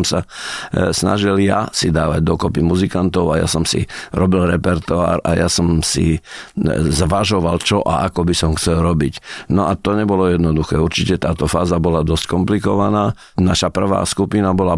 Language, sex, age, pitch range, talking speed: Slovak, male, 50-69, 90-105 Hz, 160 wpm